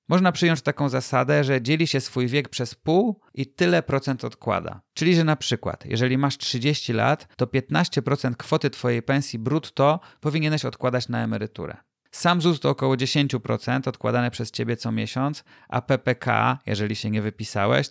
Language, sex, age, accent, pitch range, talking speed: Polish, male, 30-49, native, 115-140 Hz, 165 wpm